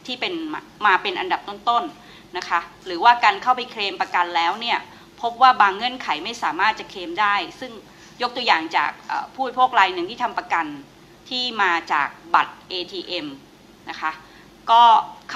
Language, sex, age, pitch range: Thai, female, 30-49, 185-260 Hz